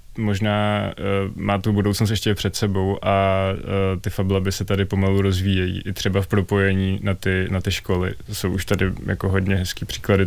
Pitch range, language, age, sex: 95-100 Hz, Czech, 20-39, male